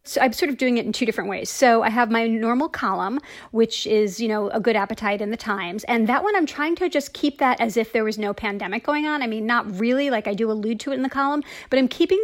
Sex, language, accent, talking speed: female, English, American, 290 wpm